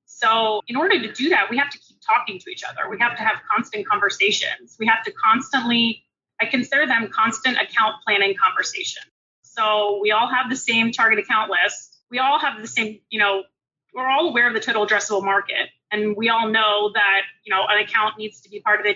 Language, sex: English, female